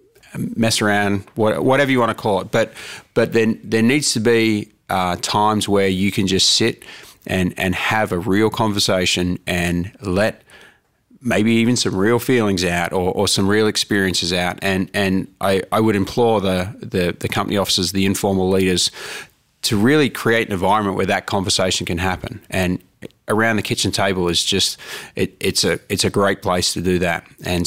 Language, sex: English, male